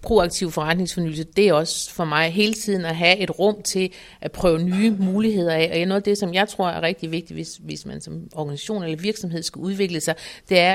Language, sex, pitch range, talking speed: Danish, female, 165-200 Hz, 220 wpm